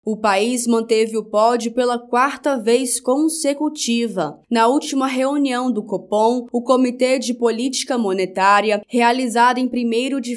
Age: 20-39